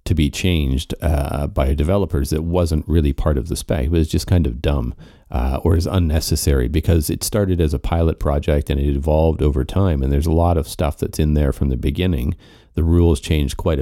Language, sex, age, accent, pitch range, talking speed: English, male, 40-59, American, 75-90 Hz, 220 wpm